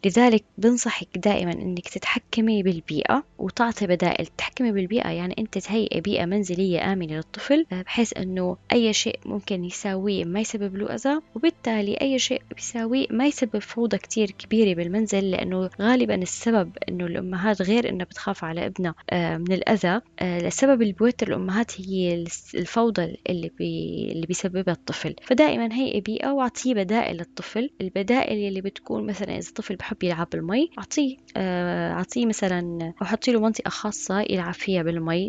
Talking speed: 140 wpm